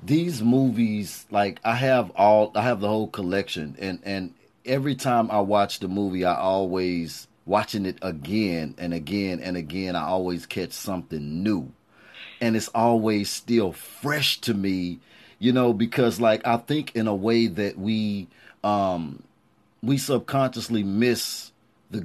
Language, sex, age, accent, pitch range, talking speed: English, male, 30-49, American, 100-120 Hz, 150 wpm